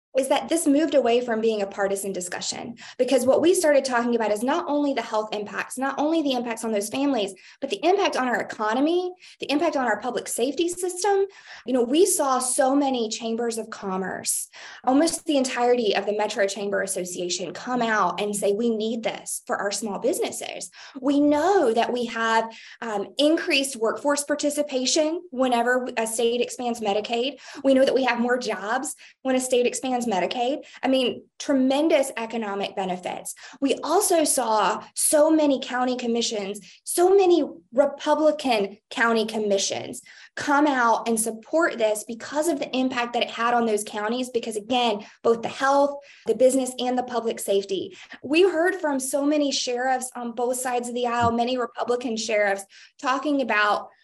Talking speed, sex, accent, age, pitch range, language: 175 wpm, female, American, 20-39, 225-285 Hz, English